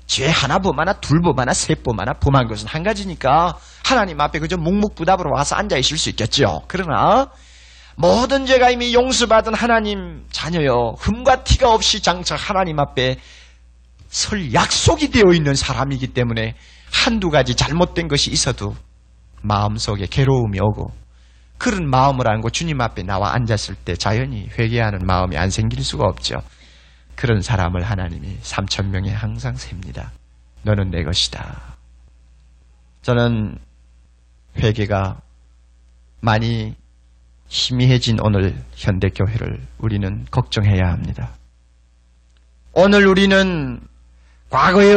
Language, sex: Korean, male